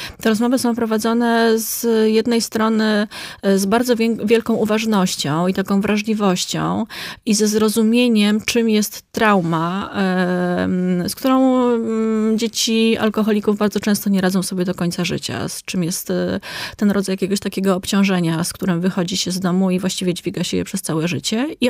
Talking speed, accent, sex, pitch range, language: 150 wpm, native, female, 185-220 Hz, Polish